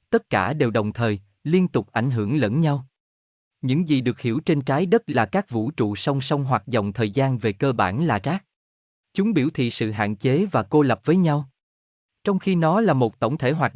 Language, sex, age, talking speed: Vietnamese, male, 20-39, 225 wpm